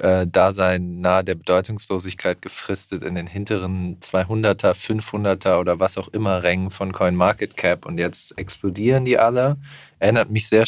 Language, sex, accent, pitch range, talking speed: German, male, German, 95-110 Hz, 150 wpm